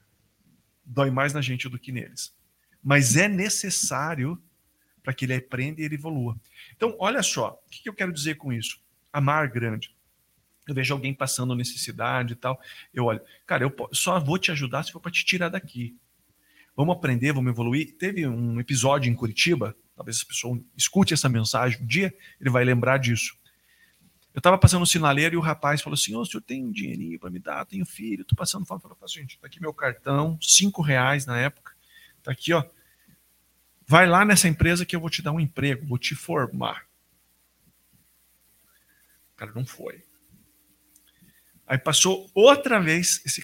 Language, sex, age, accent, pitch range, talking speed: Portuguese, male, 40-59, Brazilian, 125-175 Hz, 185 wpm